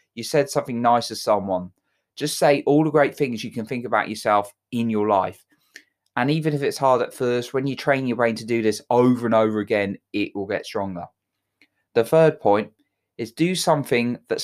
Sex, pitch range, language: male, 105-145 Hz, English